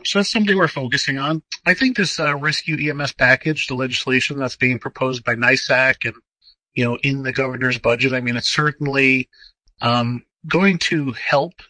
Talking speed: 180 wpm